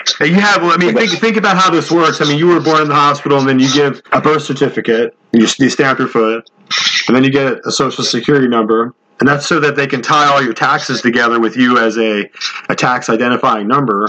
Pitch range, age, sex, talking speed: 120-145 Hz, 30-49, male, 245 wpm